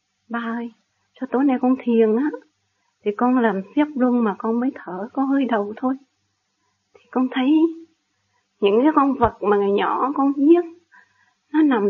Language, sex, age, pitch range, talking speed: Vietnamese, female, 20-39, 215-275 Hz, 175 wpm